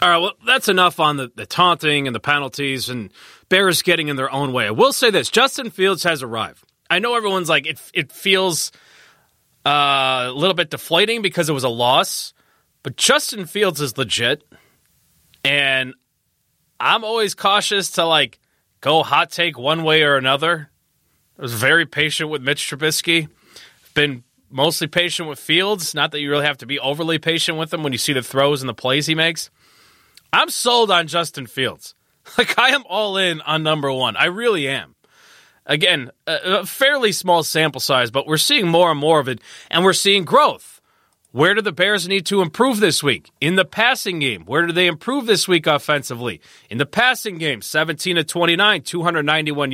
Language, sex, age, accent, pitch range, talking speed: English, male, 30-49, American, 140-185 Hz, 185 wpm